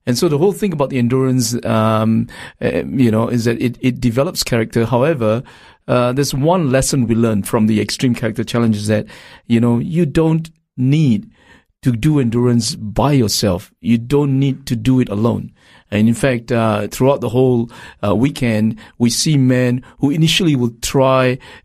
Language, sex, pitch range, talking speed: English, male, 115-140 Hz, 175 wpm